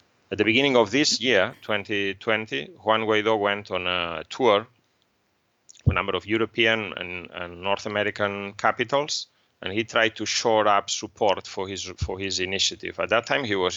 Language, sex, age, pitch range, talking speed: English, male, 30-49, 95-110 Hz, 170 wpm